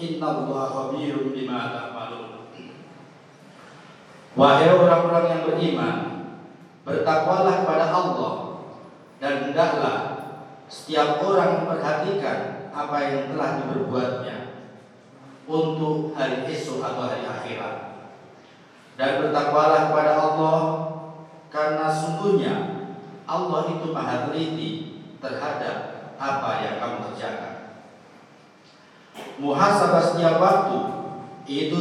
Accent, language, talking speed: native, Indonesian, 75 wpm